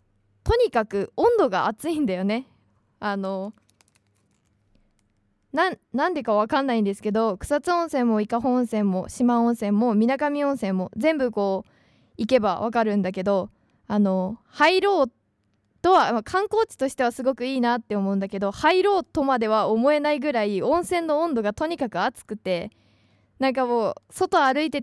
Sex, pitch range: female, 205-270 Hz